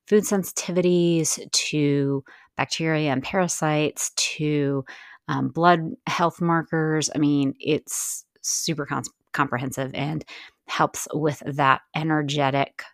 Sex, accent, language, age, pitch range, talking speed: female, American, English, 30-49, 140-180 Hz, 95 wpm